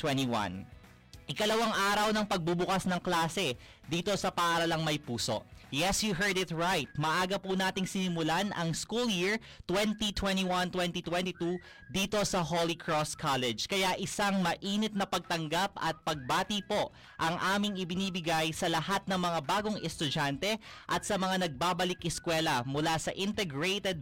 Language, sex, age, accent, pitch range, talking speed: Filipino, male, 30-49, native, 160-200 Hz, 135 wpm